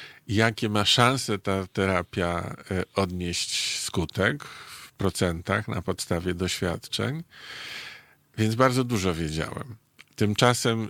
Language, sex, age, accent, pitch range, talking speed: Polish, male, 50-69, native, 95-115 Hz, 95 wpm